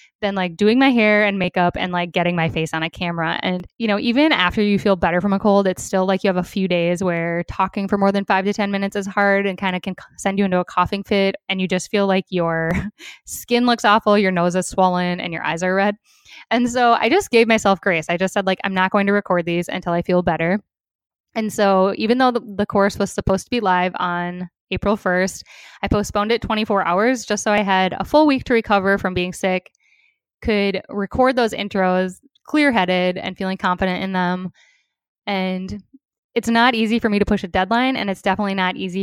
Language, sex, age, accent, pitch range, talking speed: English, female, 10-29, American, 180-215 Hz, 235 wpm